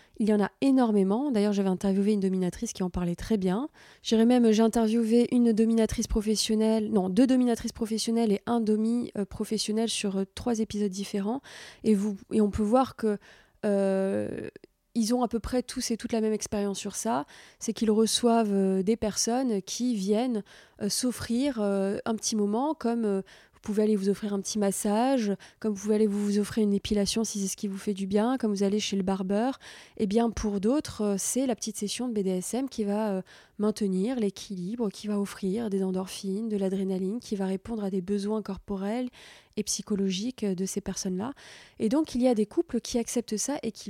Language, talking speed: French, 200 wpm